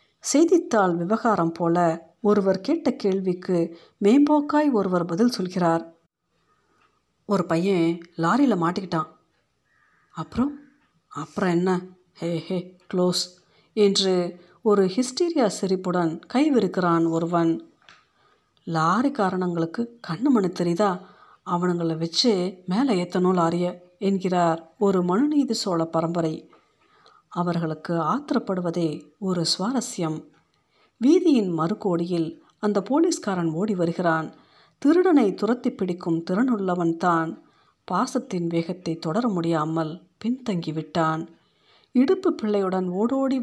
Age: 50-69